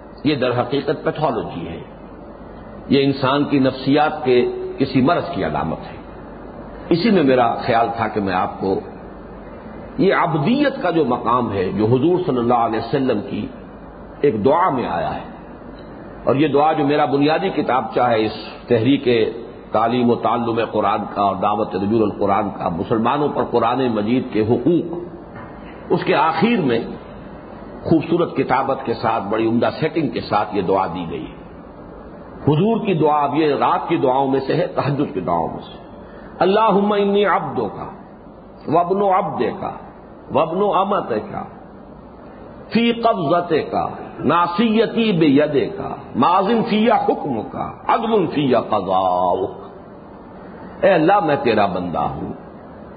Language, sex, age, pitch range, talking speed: English, male, 50-69, 115-170 Hz, 120 wpm